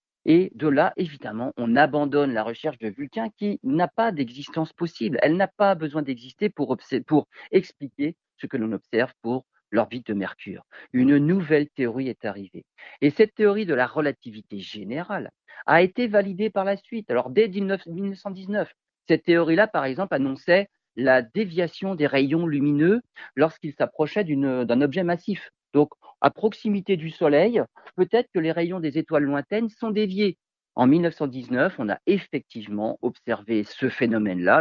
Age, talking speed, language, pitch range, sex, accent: 50-69, 160 wpm, French, 135-200 Hz, male, French